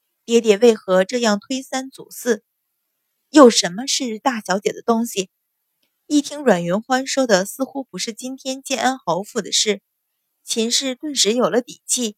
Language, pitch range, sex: Chinese, 195-260 Hz, female